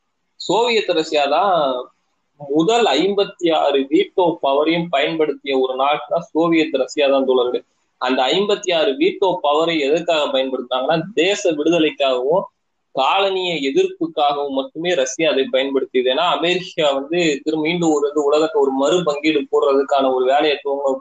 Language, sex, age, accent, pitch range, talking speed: Tamil, male, 20-39, native, 140-170 Hz, 125 wpm